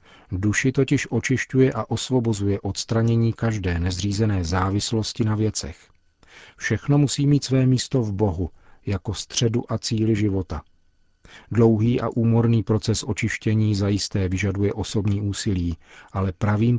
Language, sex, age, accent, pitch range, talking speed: Czech, male, 40-59, native, 95-115 Hz, 120 wpm